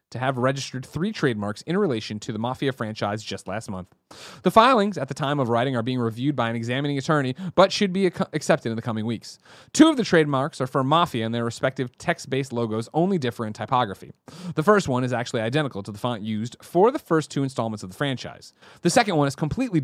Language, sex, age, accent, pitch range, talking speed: English, male, 30-49, American, 120-165 Hz, 225 wpm